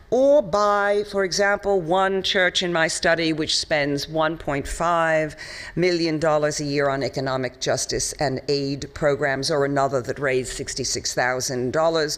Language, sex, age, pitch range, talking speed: German, female, 50-69, 140-185 Hz, 140 wpm